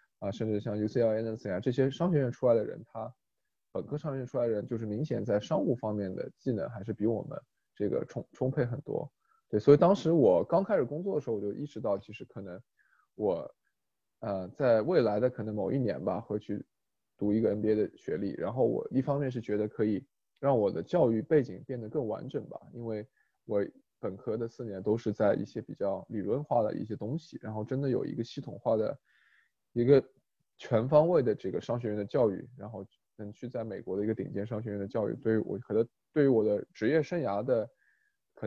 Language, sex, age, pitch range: Chinese, male, 20-39, 105-130 Hz